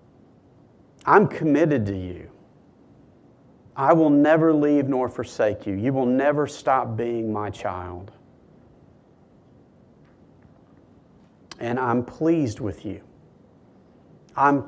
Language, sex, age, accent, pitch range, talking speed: English, male, 40-59, American, 120-150 Hz, 100 wpm